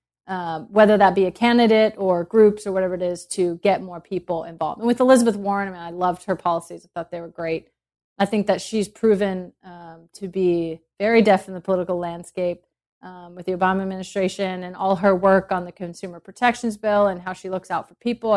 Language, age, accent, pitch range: English, 30-49, American, 180-215 Hz